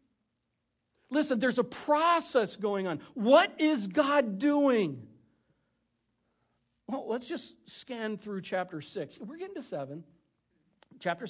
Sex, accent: male, American